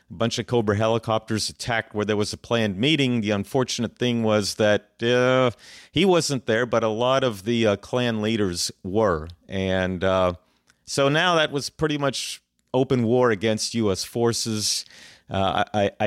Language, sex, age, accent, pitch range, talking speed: English, male, 40-59, American, 100-120 Hz, 160 wpm